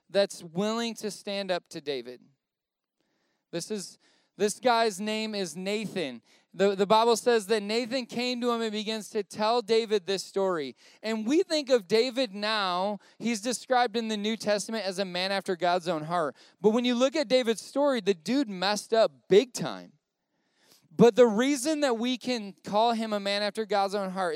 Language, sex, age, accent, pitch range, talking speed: English, male, 20-39, American, 180-225 Hz, 185 wpm